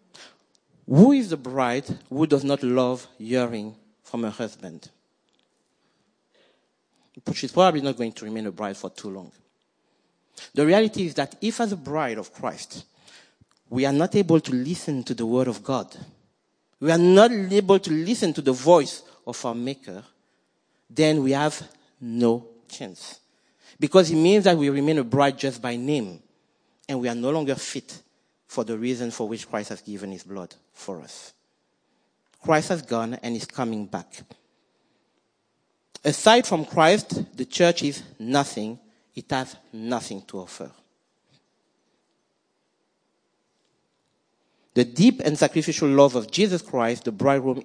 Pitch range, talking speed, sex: 115-160 Hz, 150 wpm, male